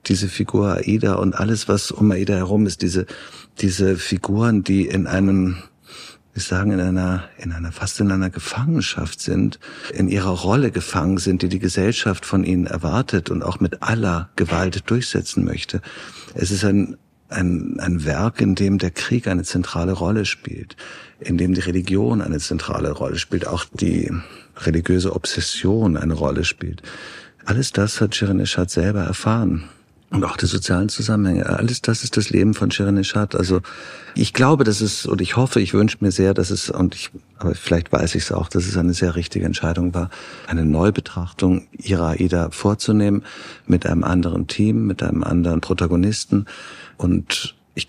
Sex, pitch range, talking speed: male, 90-105 Hz, 175 wpm